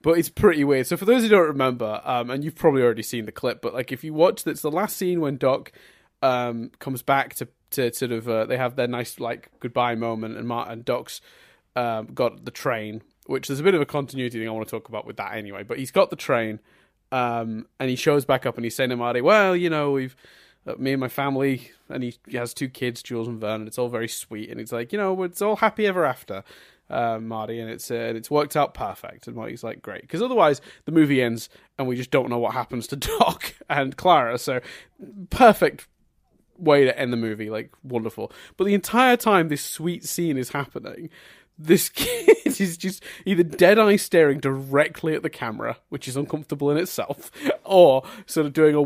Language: English